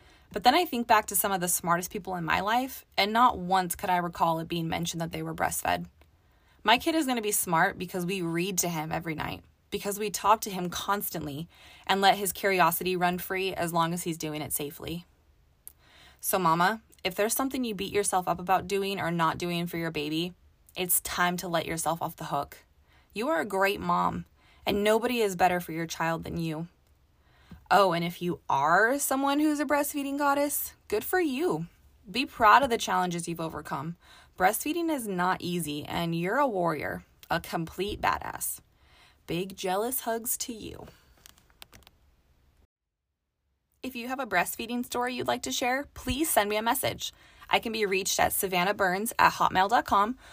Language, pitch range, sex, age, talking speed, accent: English, 160-215 Hz, female, 20-39, 190 wpm, American